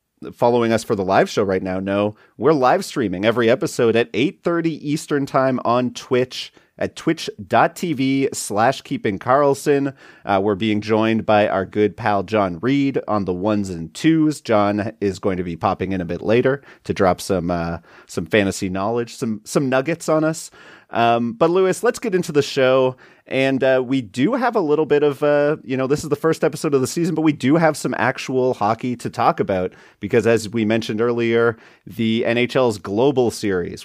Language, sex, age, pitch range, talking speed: English, male, 30-49, 105-140 Hz, 195 wpm